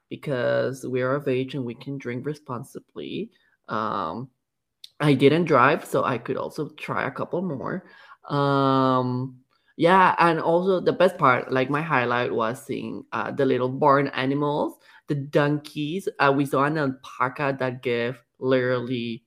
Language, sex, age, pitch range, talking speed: English, male, 20-39, 130-155 Hz, 155 wpm